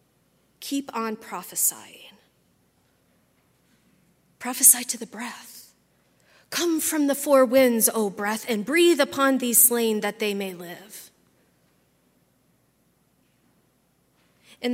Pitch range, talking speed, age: 200-245 Hz, 100 wpm, 30-49